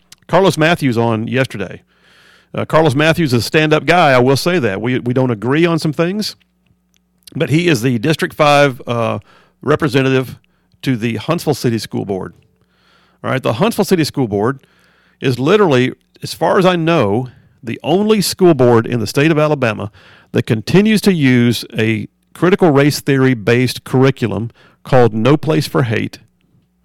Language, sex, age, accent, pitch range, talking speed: English, male, 50-69, American, 115-150 Hz, 165 wpm